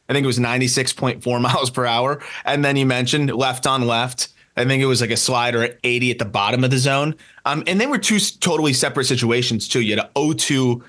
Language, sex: English, male